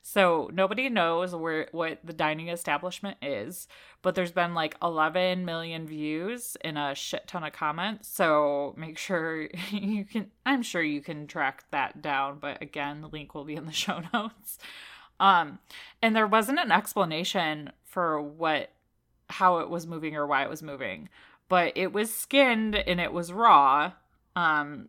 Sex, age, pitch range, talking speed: female, 30-49, 160-215 Hz, 170 wpm